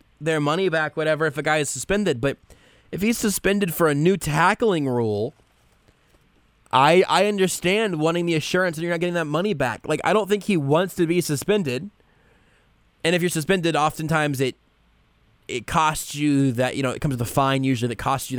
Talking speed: 200 wpm